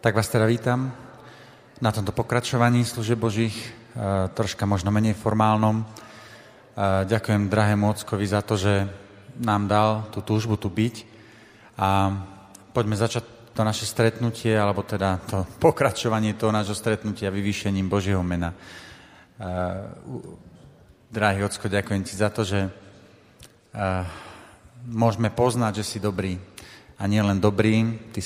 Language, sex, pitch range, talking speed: Slovak, male, 100-115 Hz, 125 wpm